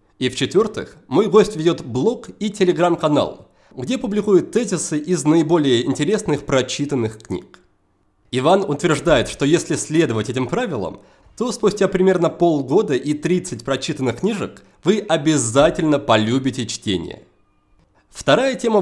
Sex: male